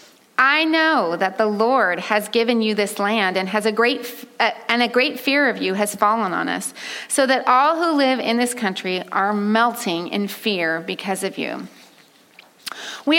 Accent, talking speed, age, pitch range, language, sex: American, 185 wpm, 30-49, 210-275 Hz, English, female